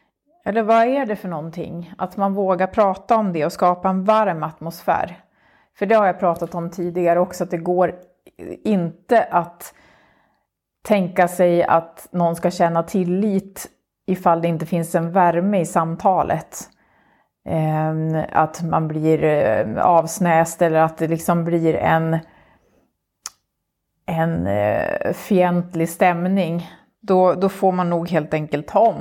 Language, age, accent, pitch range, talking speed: Swedish, 30-49, native, 160-185 Hz, 140 wpm